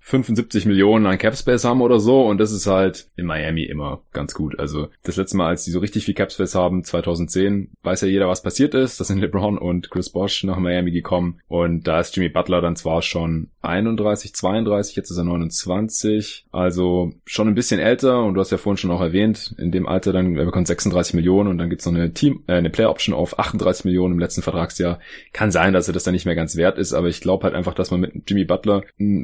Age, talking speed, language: 20-39, 240 wpm, German